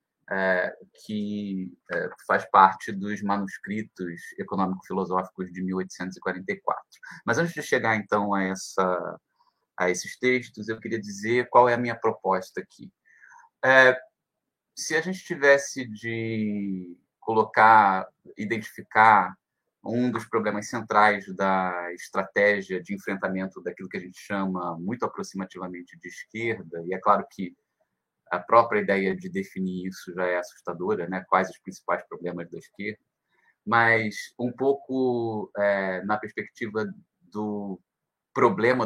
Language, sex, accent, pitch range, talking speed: Portuguese, male, Brazilian, 95-115 Hz, 125 wpm